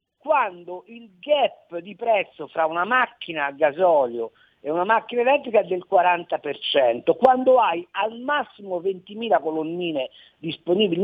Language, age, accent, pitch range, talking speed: Italian, 50-69, native, 170-250 Hz, 130 wpm